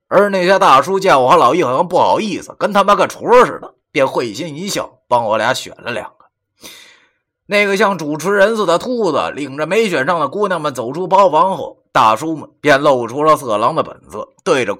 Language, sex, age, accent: Chinese, male, 30-49, native